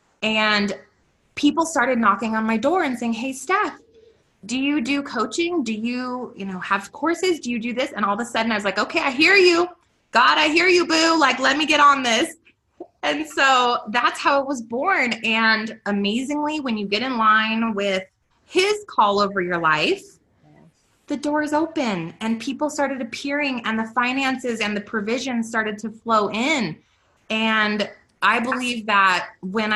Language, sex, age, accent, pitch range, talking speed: English, female, 20-39, American, 200-275 Hz, 180 wpm